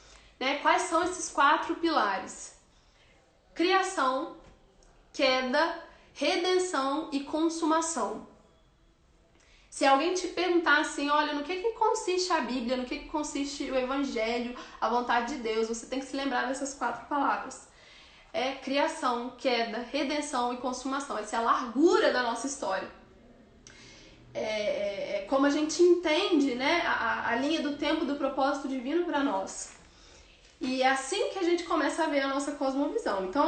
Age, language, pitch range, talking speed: 10-29, Gujarati, 270-330 Hz, 150 wpm